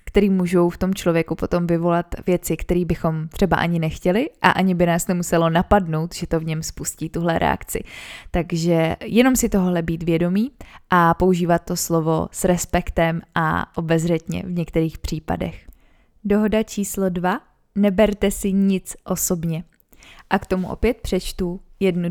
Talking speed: 150 wpm